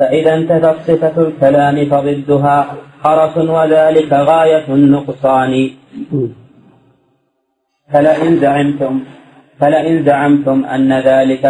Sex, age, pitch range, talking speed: male, 40-59, 135-160 Hz, 80 wpm